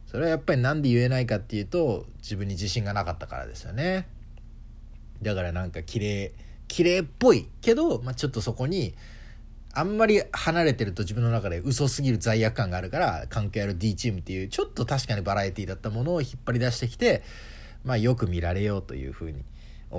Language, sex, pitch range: Japanese, male, 95-135 Hz